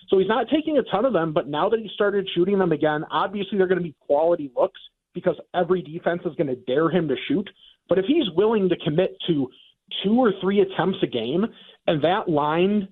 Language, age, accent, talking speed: English, 40-59, American, 230 wpm